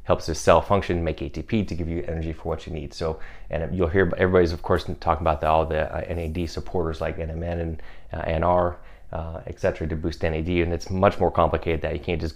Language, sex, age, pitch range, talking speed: English, male, 30-49, 80-90 Hz, 225 wpm